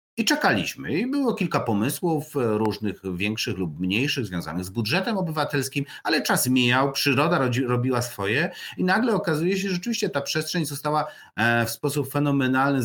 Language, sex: Polish, male